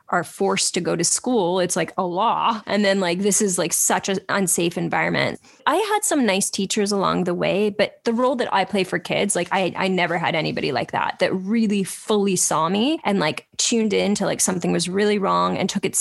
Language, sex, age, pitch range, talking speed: English, female, 10-29, 180-235 Hz, 230 wpm